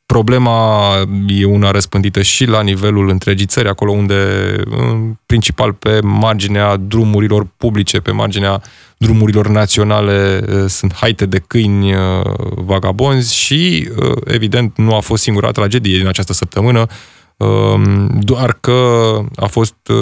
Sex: male